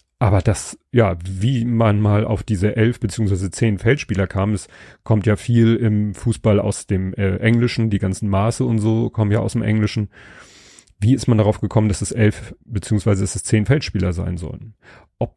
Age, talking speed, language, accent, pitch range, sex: 30-49, 190 wpm, German, German, 100-115 Hz, male